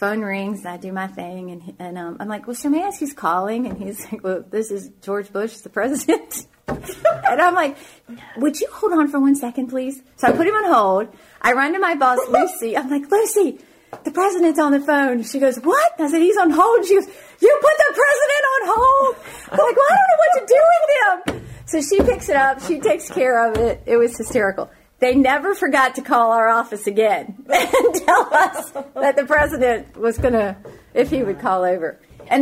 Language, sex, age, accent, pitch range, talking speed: English, female, 40-59, American, 190-295 Hz, 220 wpm